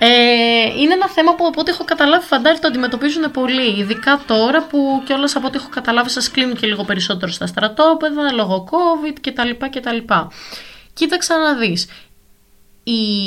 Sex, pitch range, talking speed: female, 190-290 Hz, 155 wpm